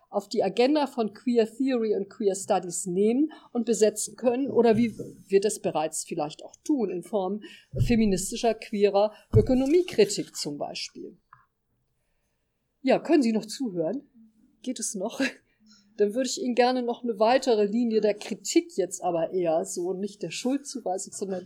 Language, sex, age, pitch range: German, female, 50-69, 205-255 Hz